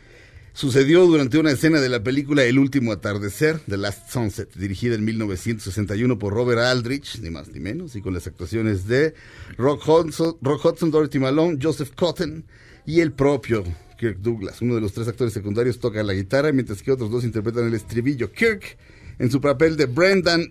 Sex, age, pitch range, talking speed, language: male, 50-69, 105-145 Hz, 180 wpm, Spanish